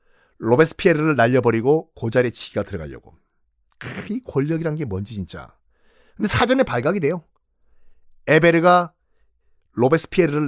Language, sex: Korean, male